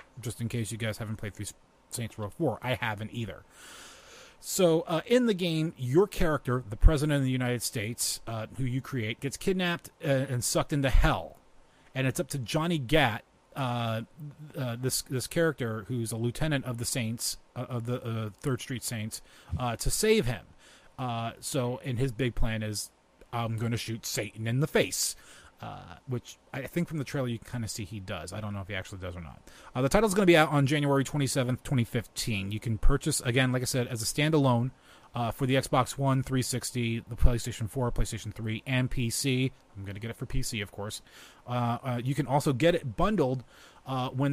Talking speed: 210 wpm